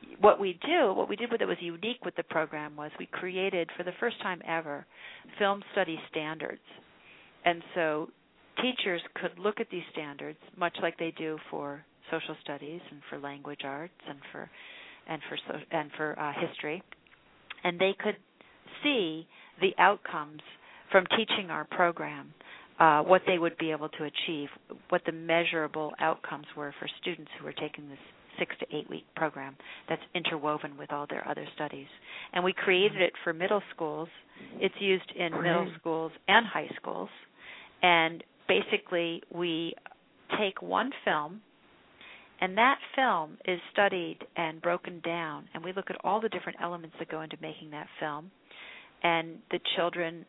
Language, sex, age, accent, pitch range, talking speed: English, female, 50-69, American, 155-185 Hz, 160 wpm